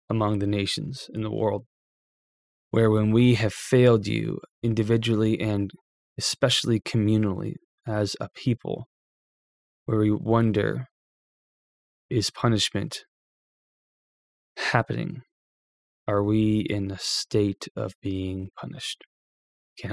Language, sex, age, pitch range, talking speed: English, male, 20-39, 100-115 Hz, 100 wpm